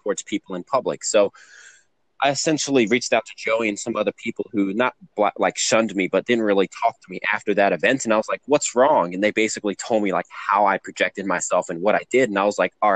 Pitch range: 100-125 Hz